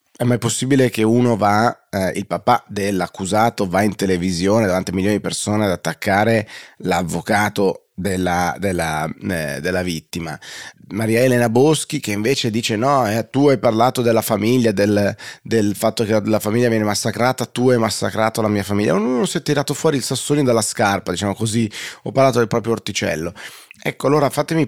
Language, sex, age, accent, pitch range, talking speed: Italian, male, 30-49, native, 100-120 Hz, 175 wpm